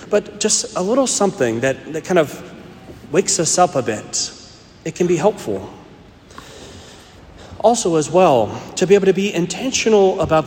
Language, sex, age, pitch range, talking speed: English, male, 40-59, 140-195 Hz, 160 wpm